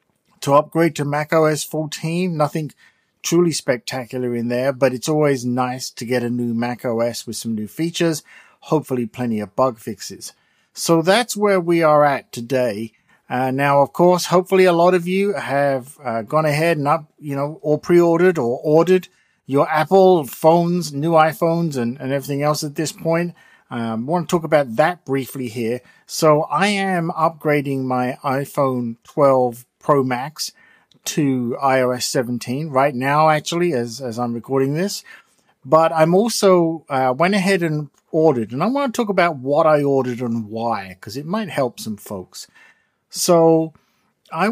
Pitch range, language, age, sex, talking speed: 125-165 Hz, English, 50-69, male, 165 wpm